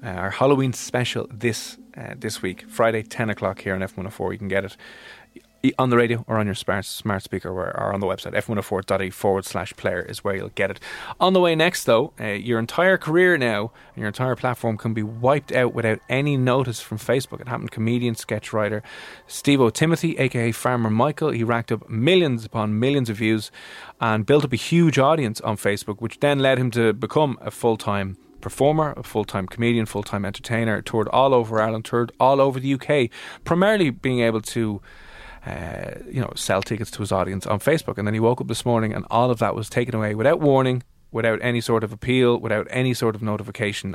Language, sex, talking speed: English, male, 210 wpm